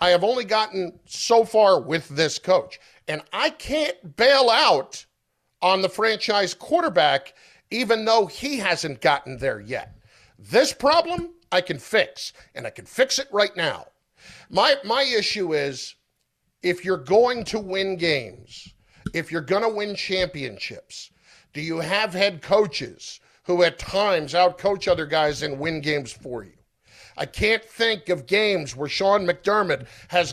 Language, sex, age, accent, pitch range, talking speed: English, male, 50-69, American, 175-230 Hz, 155 wpm